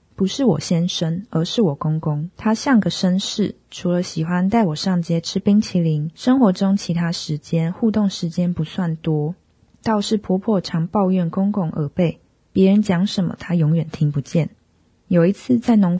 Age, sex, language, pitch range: 20-39, female, Chinese, 165-205 Hz